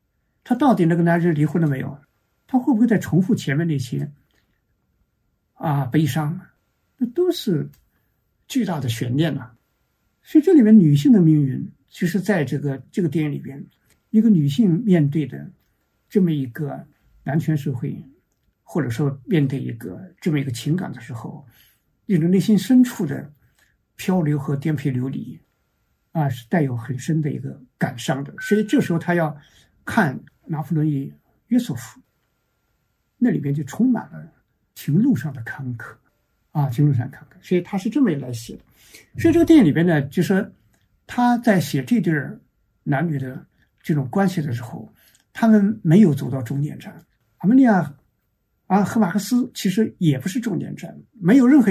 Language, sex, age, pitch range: Chinese, male, 60-79, 140-210 Hz